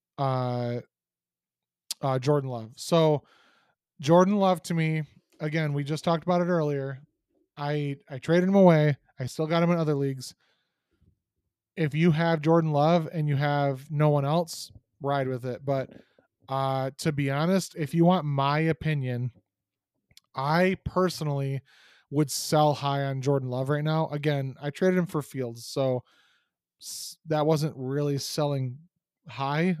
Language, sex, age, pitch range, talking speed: English, male, 20-39, 135-160 Hz, 150 wpm